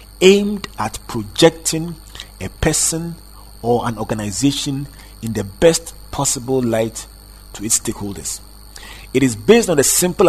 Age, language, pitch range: 40-59, English, 105-165 Hz